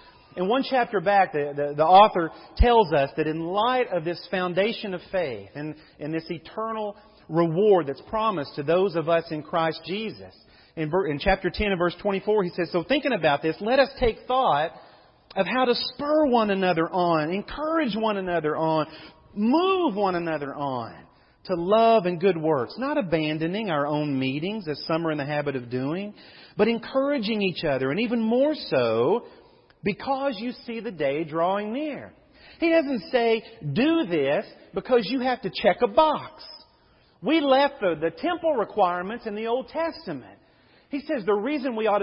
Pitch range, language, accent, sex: 165-250 Hz, English, American, male